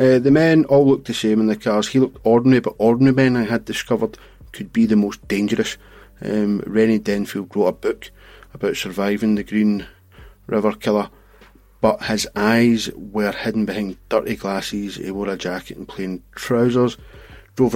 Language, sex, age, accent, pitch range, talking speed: English, male, 30-49, British, 100-120 Hz, 175 wpm